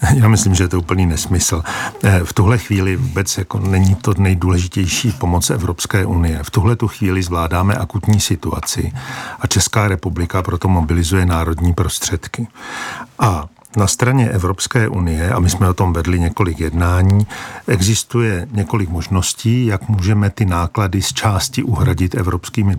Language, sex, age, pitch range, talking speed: Czech, male, 50-69, 90-110 Hz, 140 wpm